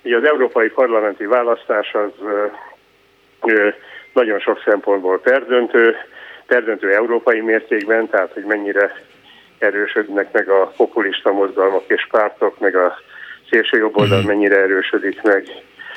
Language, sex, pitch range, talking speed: Hungarian, male, 100-125 Hz, 125 wpm